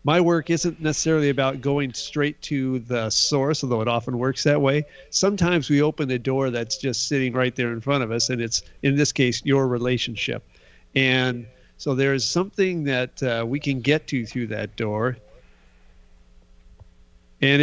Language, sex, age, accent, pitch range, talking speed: English, male, 50-69, American, 115-150 Hz, 175 wpm